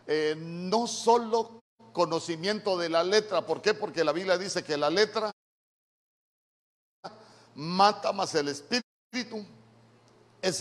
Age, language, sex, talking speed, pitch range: 50-69, Spanish, male, 120 wpm, 150-195 Hz